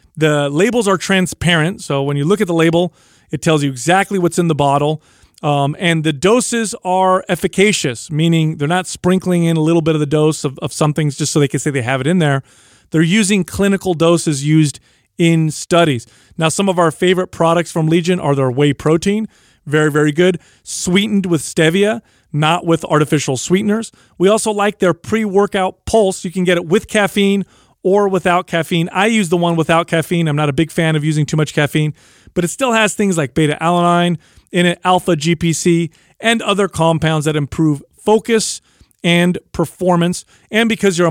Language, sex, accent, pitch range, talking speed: English, male, American, 155-190 Hz, 190 wpm